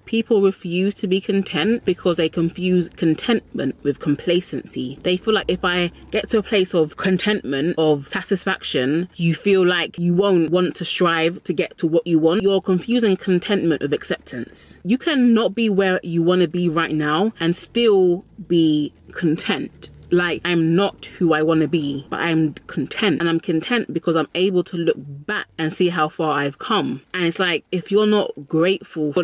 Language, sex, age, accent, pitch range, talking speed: English, female, 20-39, British, 160-195 Hz, 185 wpm